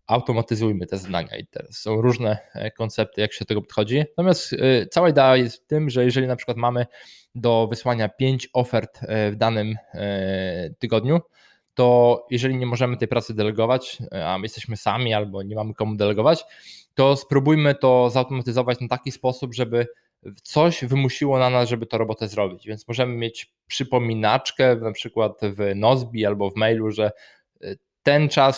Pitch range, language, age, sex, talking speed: 105-125 Hz, Polish, 20-39, male, 160 wpm